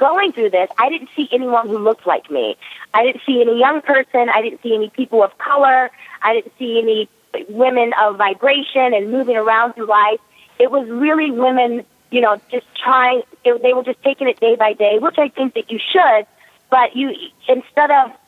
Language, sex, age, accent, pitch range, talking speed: English, female, 30-49, American, 215-270 Hz, 205 wpm